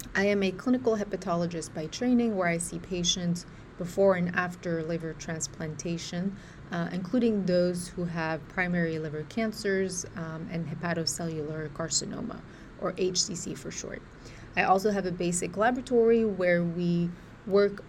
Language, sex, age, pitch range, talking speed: English, female, 30-49, 170-200 Hz, 140 wpm